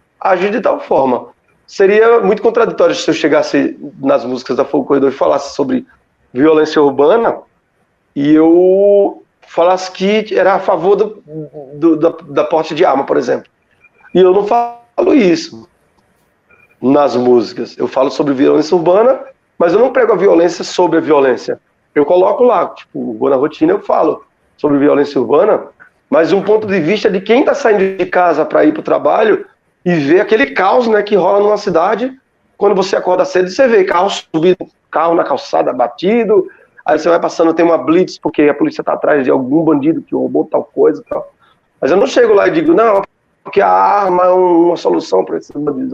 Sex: male